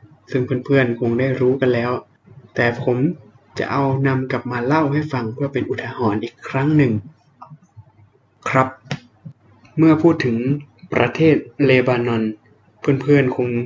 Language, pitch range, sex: Thai, 120-145 Hz, male